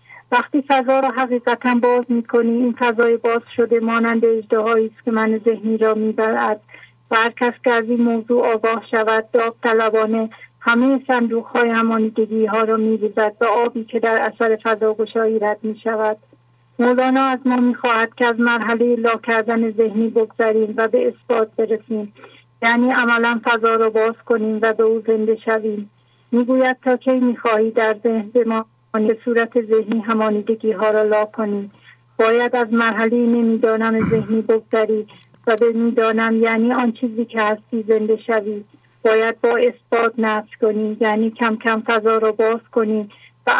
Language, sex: English, female